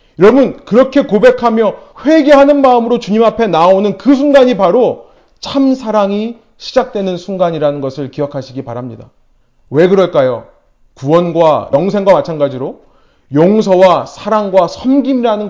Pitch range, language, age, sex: 140-205 Hz, Korean, 30-49, male